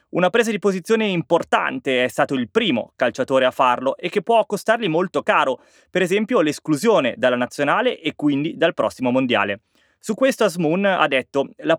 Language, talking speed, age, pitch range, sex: Italian, 175 wpm, 20-39, 135-215 Hz, male